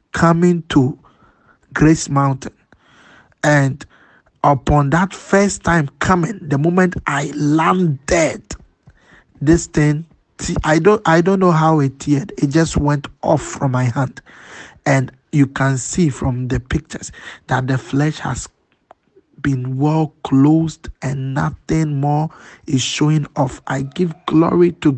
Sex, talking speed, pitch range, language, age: male, 135 wpm, 135-160 Hz, English, 50-69